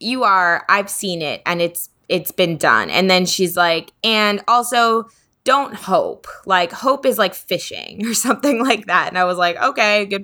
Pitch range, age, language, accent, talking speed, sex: 170-210 Hz, 20-39, English, American, 195 wpm, female